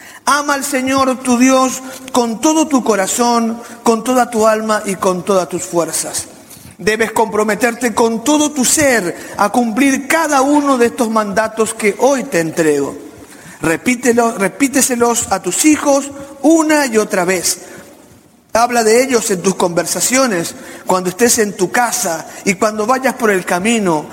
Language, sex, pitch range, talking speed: Spanish, male, 185-260 Hz, 150 wpm